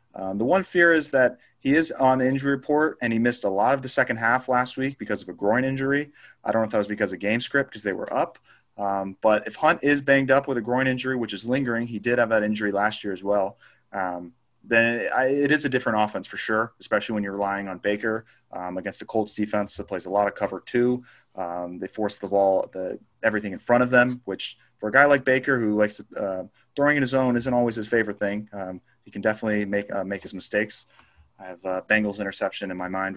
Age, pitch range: 30-49, 100-130 Hz